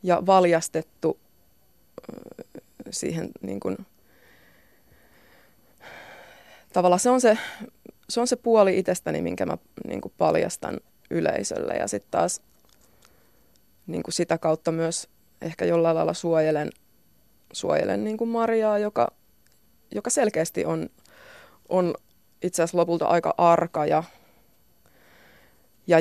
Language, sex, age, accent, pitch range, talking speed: Finnish, female, 20-39, native, 155-195 Hz, 110 wpm